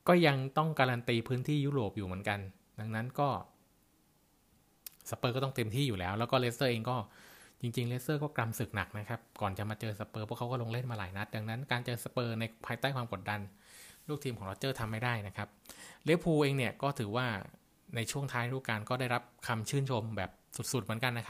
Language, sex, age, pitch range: Thai, male, 20-39, 110-130 Hz